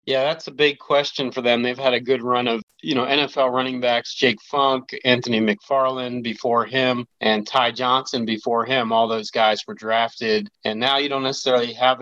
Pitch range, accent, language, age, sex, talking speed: 115-130 Hz, American, English, 30-49, male, 200 wpm